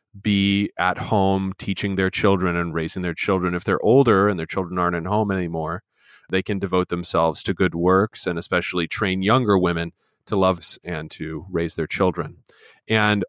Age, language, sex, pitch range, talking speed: 30-49, English, male, 90-105 Hz, 180 wpm